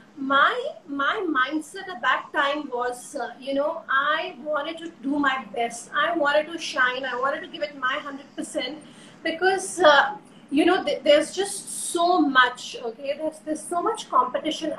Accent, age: native, 30-49